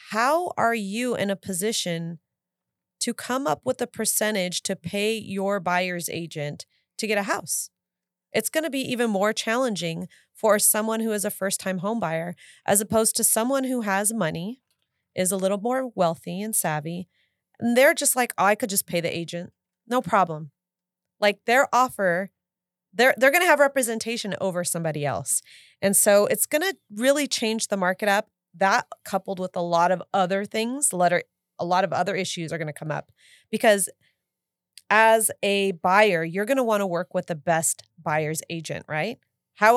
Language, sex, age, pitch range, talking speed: English, female, 30-49, 180-225 Hz, 175 wpm